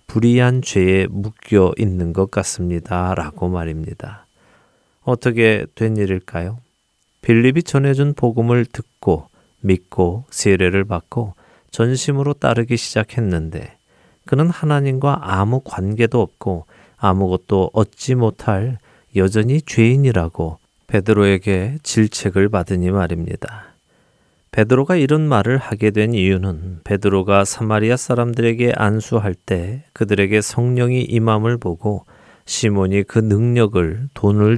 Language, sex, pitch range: Korean, male, 95-120 Hz